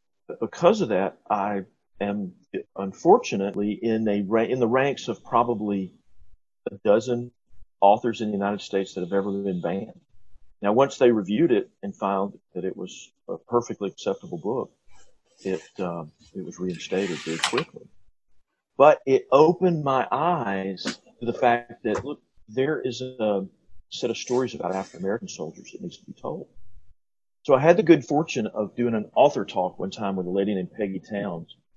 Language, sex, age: English, male, 40-59